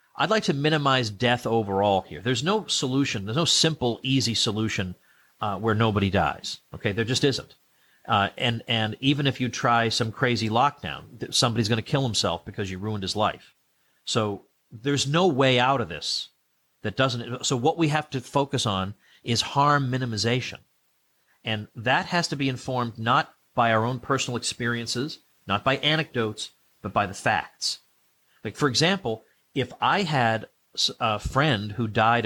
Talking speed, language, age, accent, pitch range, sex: 170 wpm, English, 40-59, American, 105-135 Hz, male